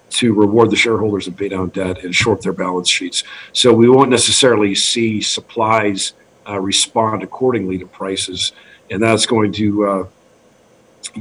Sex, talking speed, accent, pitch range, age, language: male, 155 wpm, American, 100-120 Hz, 50-69, English